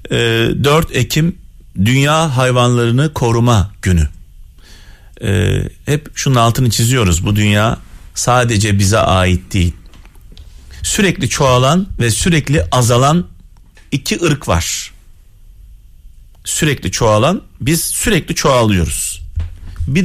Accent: native